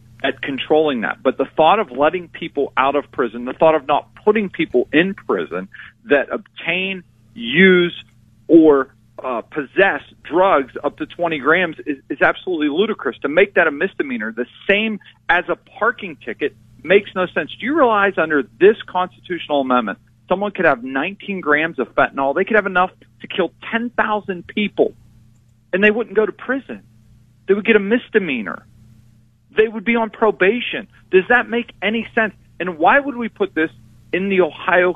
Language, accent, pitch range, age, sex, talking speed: English, American, 135-205 Hz, 40-59, male, 175 wpm